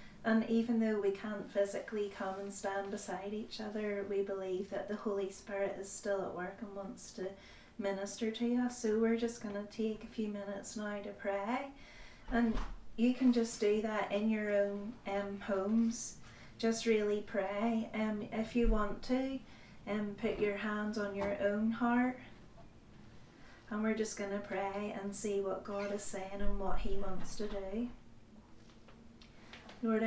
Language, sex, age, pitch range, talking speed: English, female, 30-49, 200-220 Hz, 170 wpm